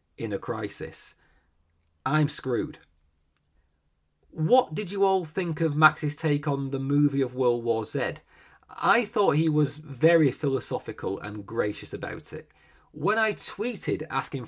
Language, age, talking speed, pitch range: English, 40-59, 140 wpm, 120-155 Hz